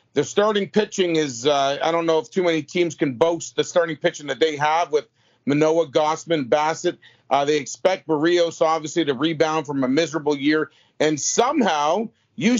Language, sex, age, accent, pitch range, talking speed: English, male, 40-59, American, 155-195 Hz, 180 wpm